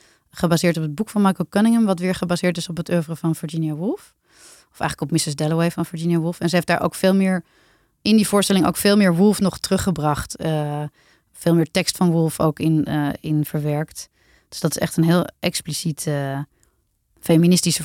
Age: 30-49